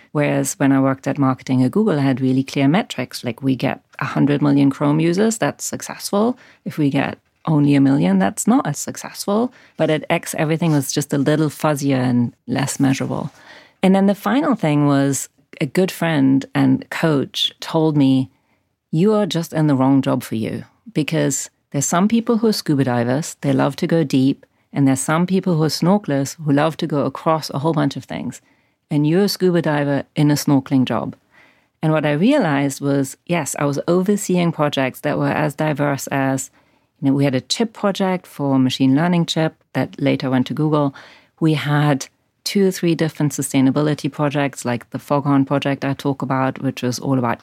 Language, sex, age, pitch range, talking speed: English, female, 40-59, 135-160 Hz, 195 wpm